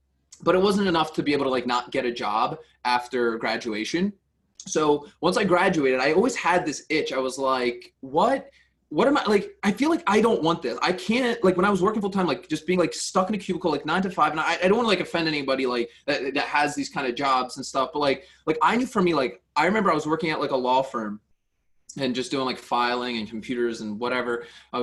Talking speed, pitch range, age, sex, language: 260 wpm, 130-195 Hz, 20-39, male, English